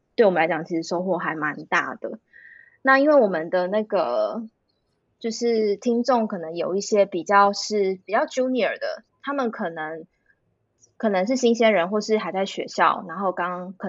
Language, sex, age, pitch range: Chinese, female, 20-39, 180-215 Hz